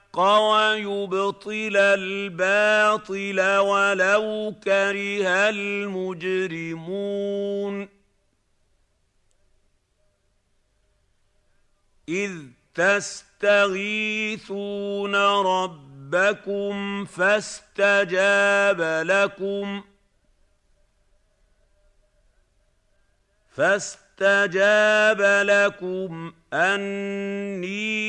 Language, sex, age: Arabic, male, 50-69